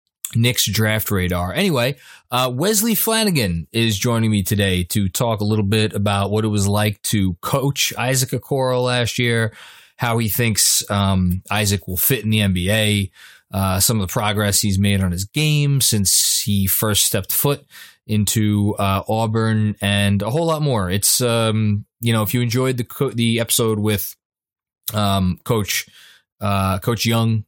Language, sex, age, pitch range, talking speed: English, male, 20-39, 100-120 Hz, 170 wpm